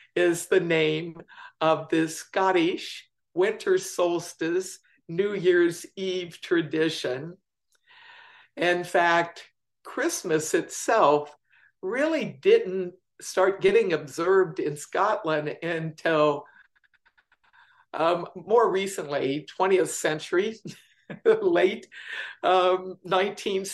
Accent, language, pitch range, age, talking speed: American, English, 160-235 Hz, 60-79, 80 wpm